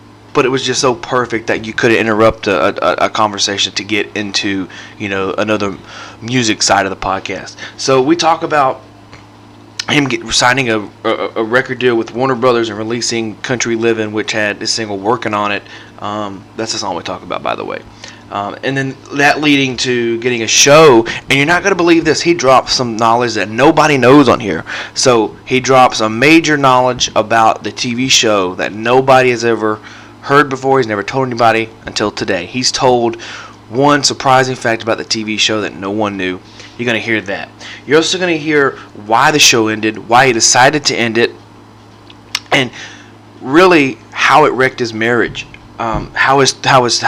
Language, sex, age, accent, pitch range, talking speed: English, male, 20-39, American, 105-130 Hz, 185 wpm